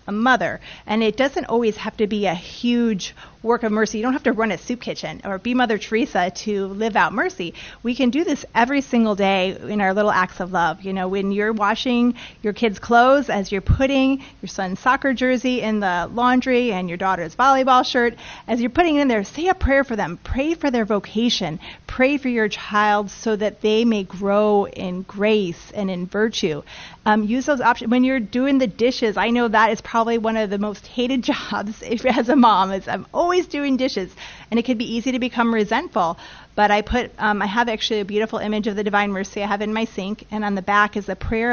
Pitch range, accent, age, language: 200-245 Hz, American, 30-49, English